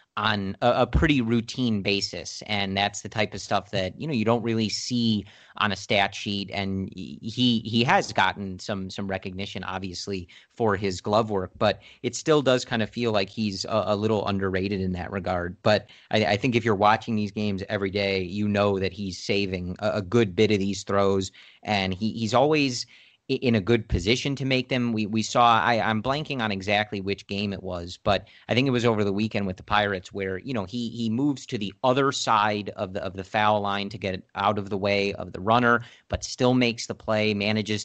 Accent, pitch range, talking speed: American, 100-115 Hz, 220 wpm